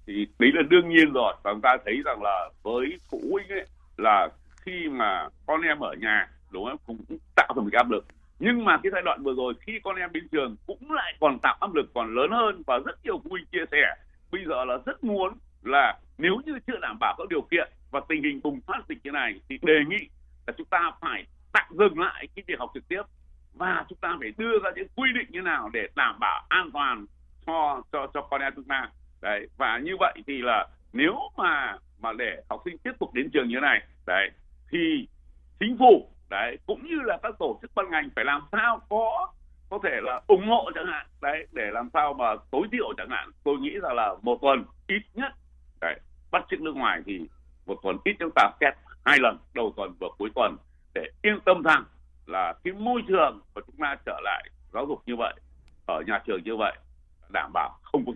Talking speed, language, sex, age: 230 wpm, Vietnamese, male, 60-79